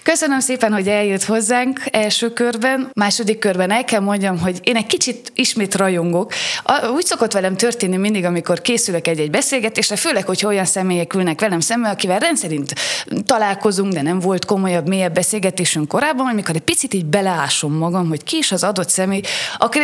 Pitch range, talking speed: 175-225 Hz, 175 wpm